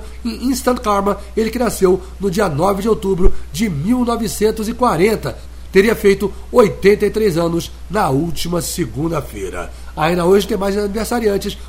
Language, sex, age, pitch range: English, male, 60-79, 190-225 Hz